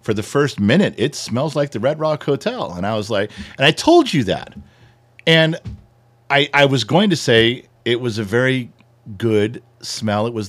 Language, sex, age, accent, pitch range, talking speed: English, male, 50-69, American, 115-160 Hz, 200 wpm